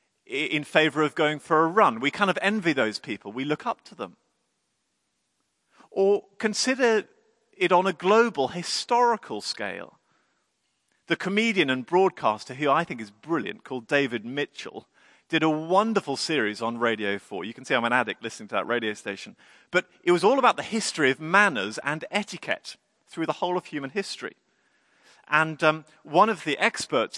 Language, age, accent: English, 40-59, British